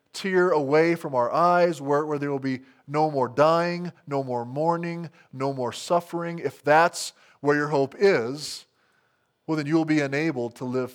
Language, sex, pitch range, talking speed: English, male, 120-155 Hz, 175 wpm